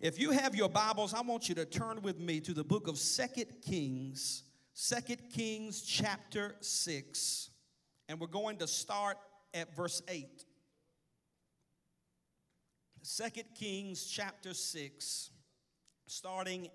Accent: American